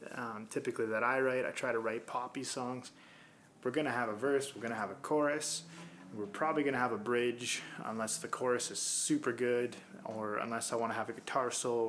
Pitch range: 110-130 Hz